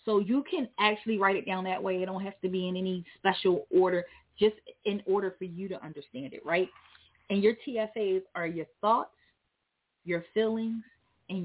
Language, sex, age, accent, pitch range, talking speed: English, female, 30-49, American, 170-215 Hz, 190 wpm